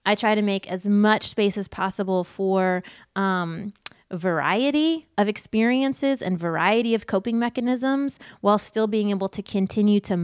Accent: American